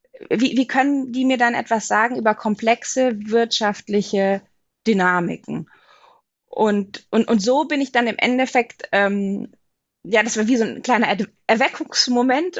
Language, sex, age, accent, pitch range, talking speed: German, female, 20-39, German, 200-250 Hz, 145 wpm